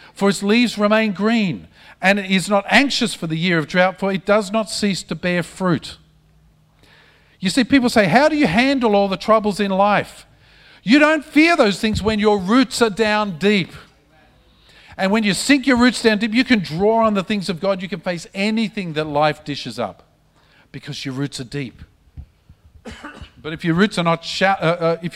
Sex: male